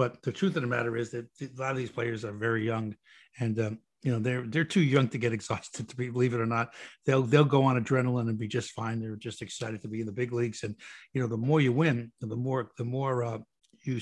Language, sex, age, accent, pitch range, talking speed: English, male, 60-79, American, 120-145 Hz, 275 wpm